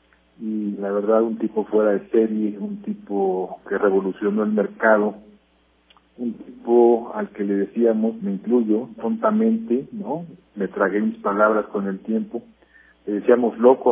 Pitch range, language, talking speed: 95-120 Hz, Spanish, 140 wpm